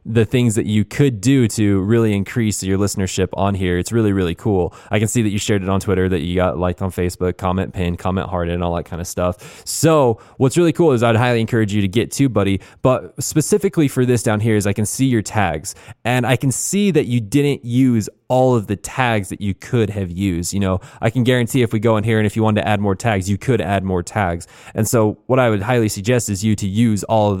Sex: male